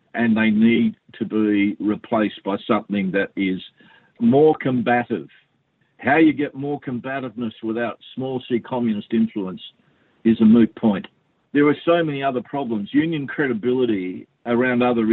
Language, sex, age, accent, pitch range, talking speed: English, male, 50-69, Australian, 100-125 Hz, 140 wpm